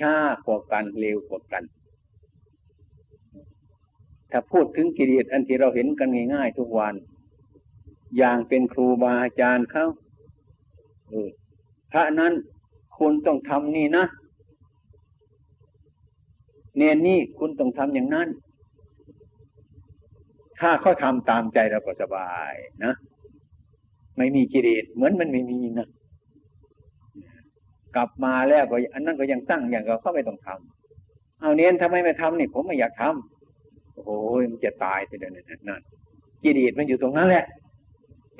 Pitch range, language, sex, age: 105-155 Hz, Thai, male, 60-79